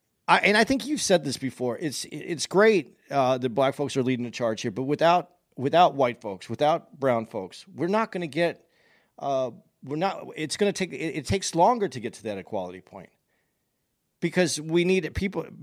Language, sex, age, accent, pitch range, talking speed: English, male, 40-59, American, 120-165 Hz, 190 wpm